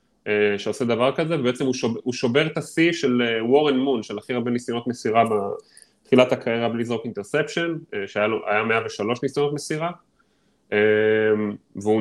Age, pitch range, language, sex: 20-39, 110-140 Hz, Hebrew, male